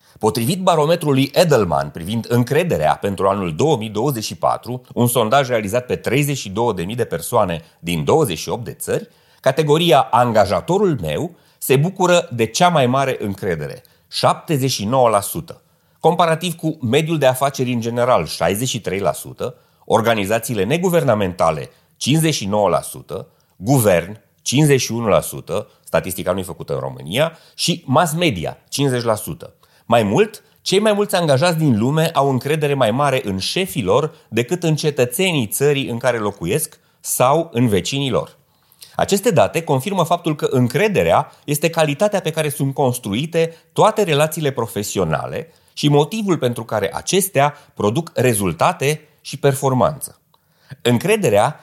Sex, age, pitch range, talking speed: male, 30-49, 115-160 Hz, 115 wpm